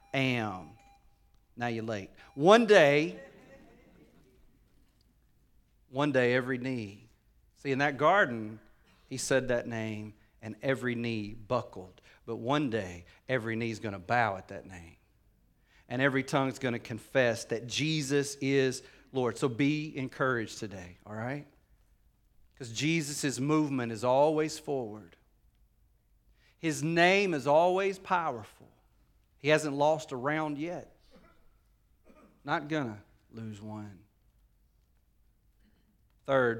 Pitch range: 105-145 Hz